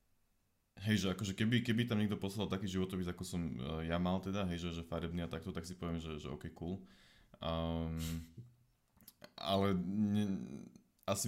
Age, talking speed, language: 20-39, 170 wpm, Slovak